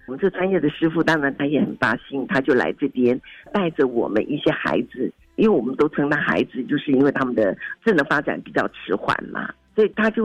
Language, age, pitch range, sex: Chinese, 50-69, 140-185 Hz, female